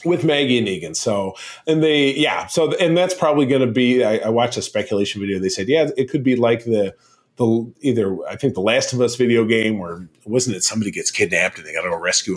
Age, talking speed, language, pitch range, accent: 40-59, 245 wpm, English, 105-145 Hz, American